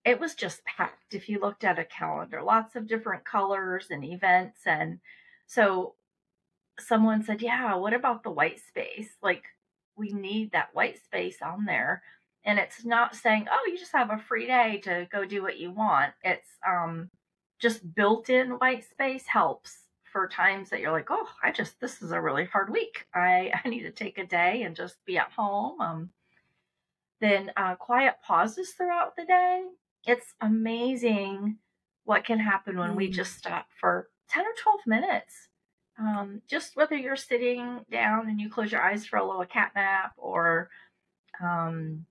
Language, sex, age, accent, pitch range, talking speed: English, female, 30-49, American, 185-240 Hz, 180 wpm